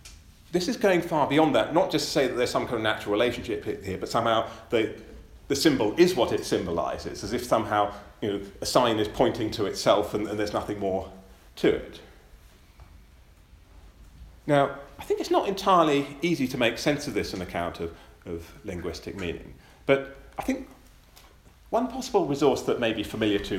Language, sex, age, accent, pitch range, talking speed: English, male, 40-59, British, 85-140 Hz, 190 wpm